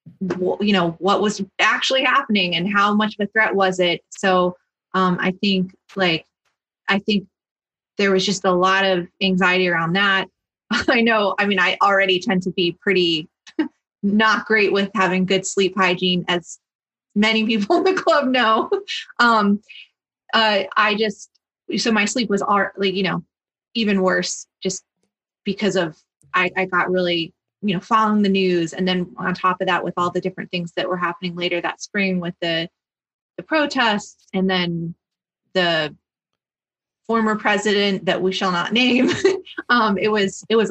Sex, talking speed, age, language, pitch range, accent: female, 170 wpm, 30-49, English, 180-205 Hz, American